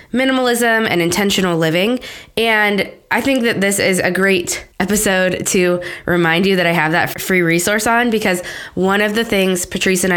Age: 20-39